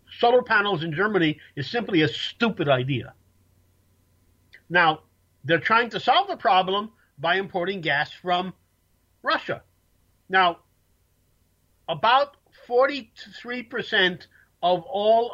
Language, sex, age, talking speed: English, male, 50-69, 100 wpm